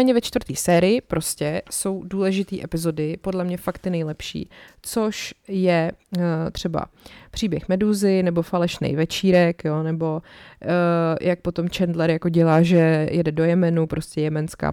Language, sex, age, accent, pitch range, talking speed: Czech, female, 20-39, native, 165-190 Hz, 140 wpm